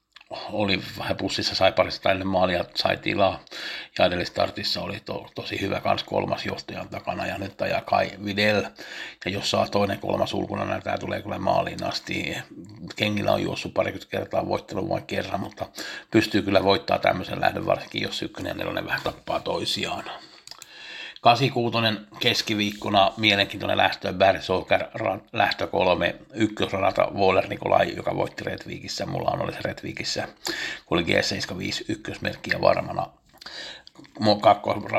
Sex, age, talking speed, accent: male, 60-79, 125 wpm, native